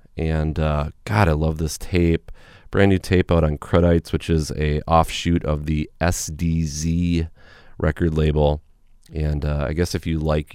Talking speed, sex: 165 wpm, male